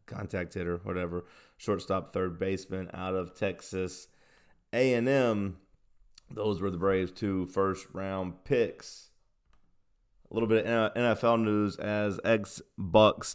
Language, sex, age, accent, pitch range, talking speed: English, male, 30-49, American, 95-110 Hz, 110 wpm